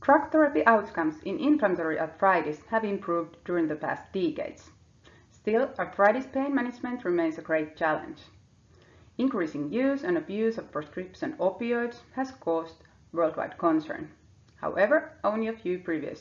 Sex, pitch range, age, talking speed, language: female, 160-215 Hz, 30-49, 135 wpm, English